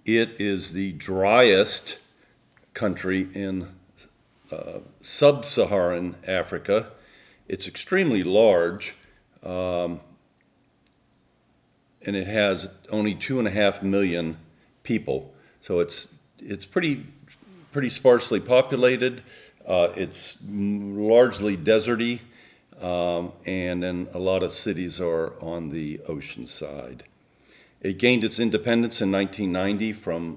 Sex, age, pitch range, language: male, 50-69, 85-115 Hz, English